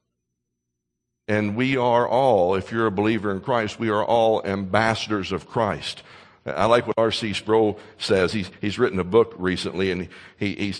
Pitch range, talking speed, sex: 105-140 Hz, 170 wpm, male